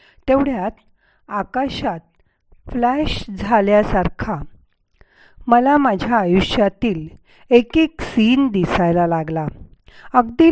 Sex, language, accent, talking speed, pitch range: female, Marathi, native, 70 wpm, 180-250 Hz